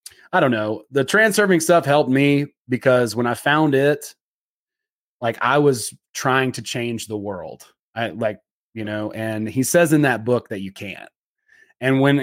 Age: 30-49